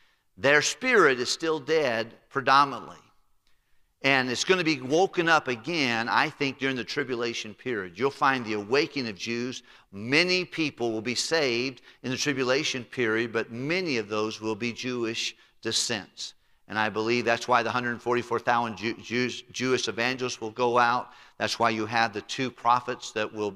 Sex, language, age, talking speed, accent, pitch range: male, English, 50-69, 165 wpm, American, 110-130 Hz